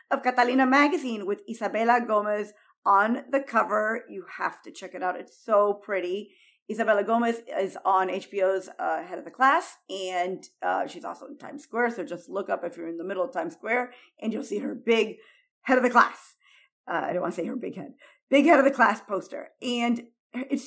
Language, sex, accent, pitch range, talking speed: English, female, American, 205-270 Hz, 210 wpm